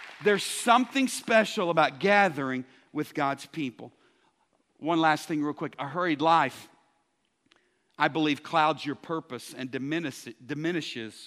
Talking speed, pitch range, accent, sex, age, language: 120 wpm, 150-215 Hz, American, male, 50-69, English